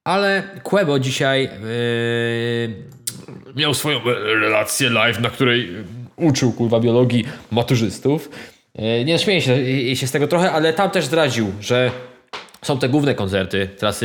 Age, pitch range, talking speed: 20-39, 115-150 Hz, 135 wpm